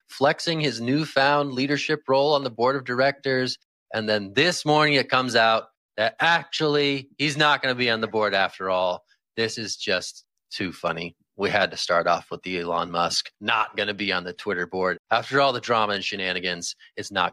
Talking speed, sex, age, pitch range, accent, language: 205 wpm, male, 30-49, 95-145 Hz, American, English